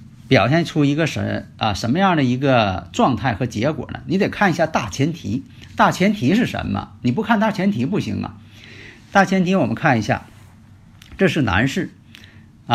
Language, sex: Chinese, male